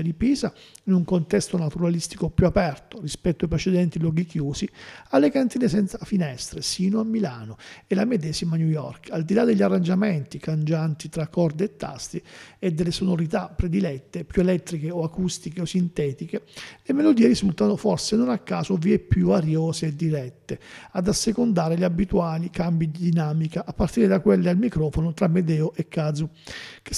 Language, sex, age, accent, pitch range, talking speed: Italian, male, 40-59, native, 160-195 Hz, 165 wpm